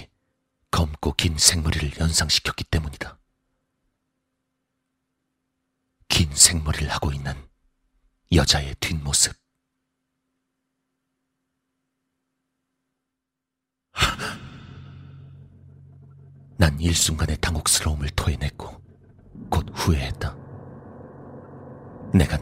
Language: Korean